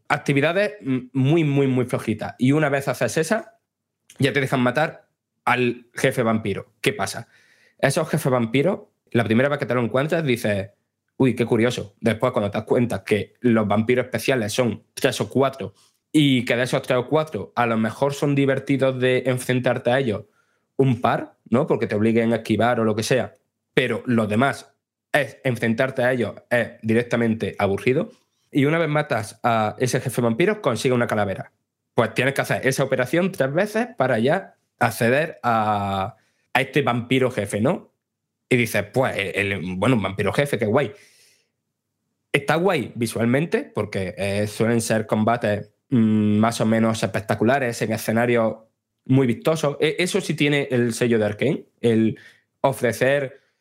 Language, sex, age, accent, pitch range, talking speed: Spanish, male, 20-39, Spanish, 110-135 Hz, 165 wpm